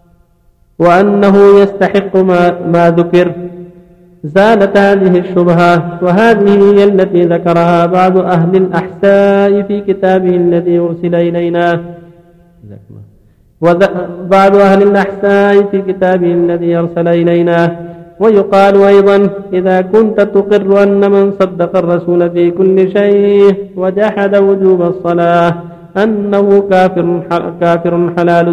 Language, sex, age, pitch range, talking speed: Arabic, male, 50-69, 175-200 Hz, 100 wpm